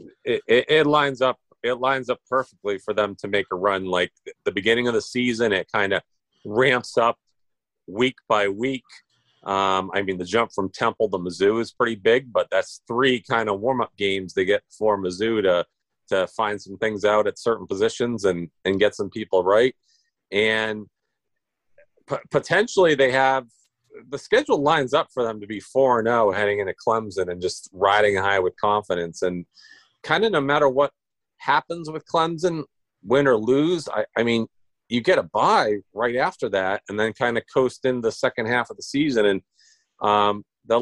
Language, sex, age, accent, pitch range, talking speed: English, male, 40-59, American, 100-135 Hz, 185 wpm